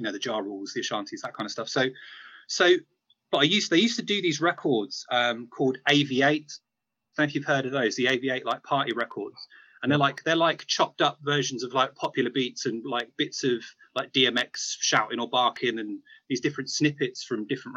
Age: 30-49